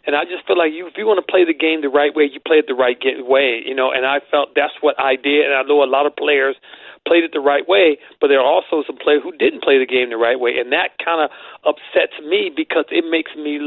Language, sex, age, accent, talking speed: English, male, 40-59, American, 285 wpm